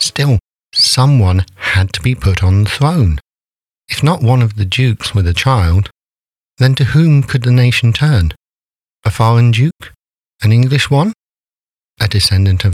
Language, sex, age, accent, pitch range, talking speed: English, male, 50-69, British, 85-115 Hz, 160 wpm